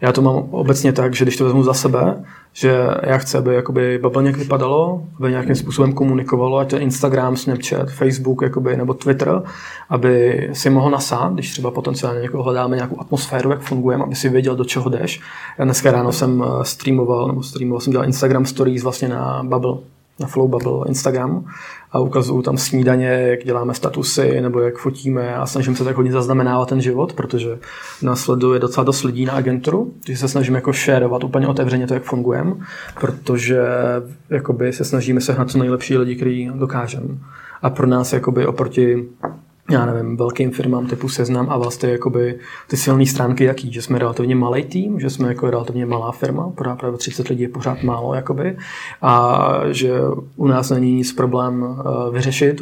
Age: 20-39